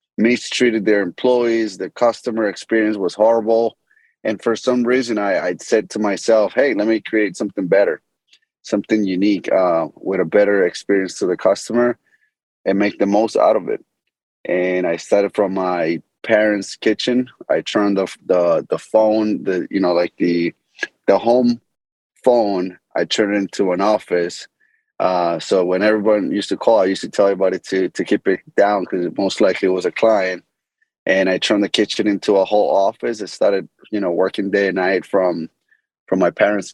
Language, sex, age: English, male, 30-49